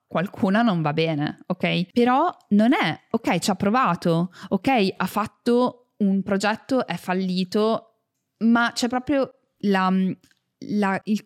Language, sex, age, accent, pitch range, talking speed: Italian, female, 20-39, native, 175-225 Hz, 125 wpm